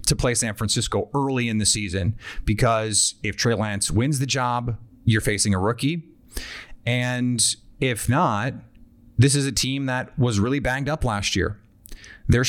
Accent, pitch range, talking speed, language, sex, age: American, 105-125 Hz, 165 wpm, English, male, 30-49